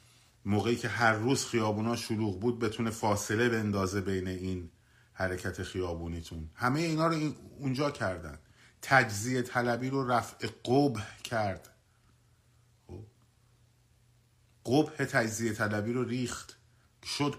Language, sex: Persian, male